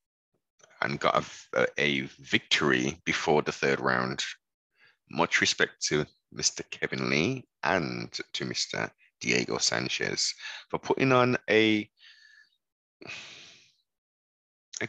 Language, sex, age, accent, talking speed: English, male, 30-49, British, 100 wpm